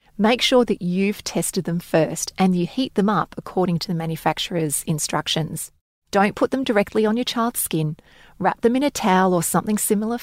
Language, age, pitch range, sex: English, 30-49, 170-220 Hz, female